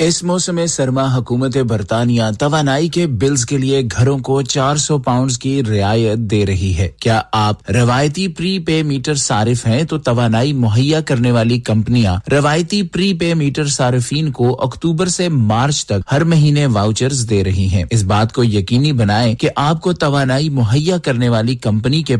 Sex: male